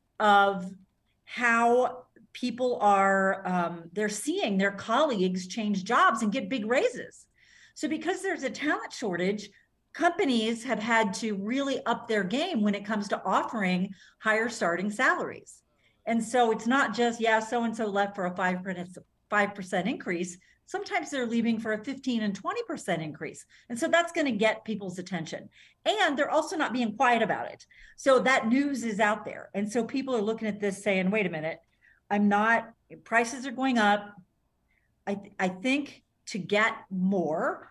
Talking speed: 165 wpm